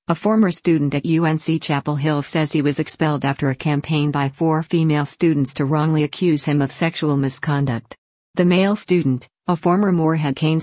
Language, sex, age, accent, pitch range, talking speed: English, female, 50-69, American, 140-165 Hz, 180 wpm